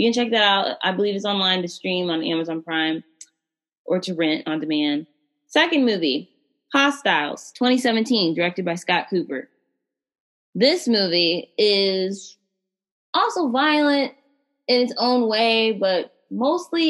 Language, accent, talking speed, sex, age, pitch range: English, American, 135 wpm, female, 20-39, 155-230 Hz